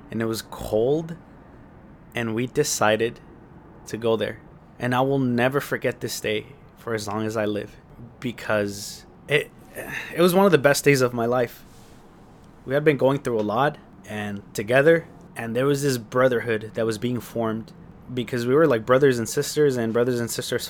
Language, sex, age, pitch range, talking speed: English, male, 20-39, 110-130 Hz, 185 wpm